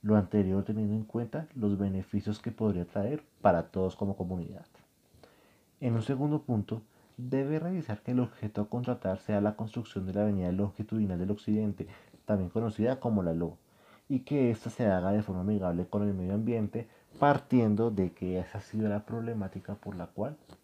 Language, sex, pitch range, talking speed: Spanish, male, 100-120 Hz, 180 wpm